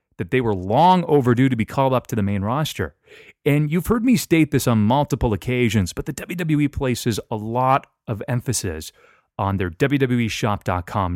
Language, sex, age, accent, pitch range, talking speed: English, male, 30-49, American, 105-150 Hz, 175 wpm